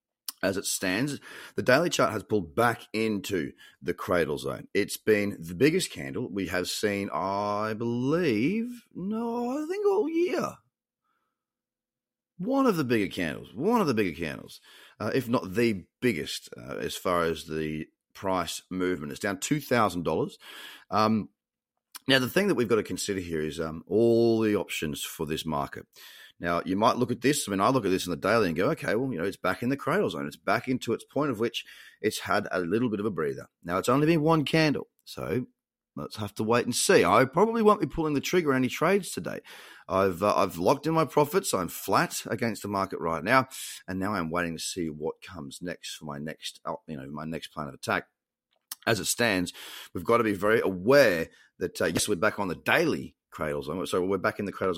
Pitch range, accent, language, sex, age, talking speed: 90-145 Hz, Australian, English, male, 30-49, 210 wpm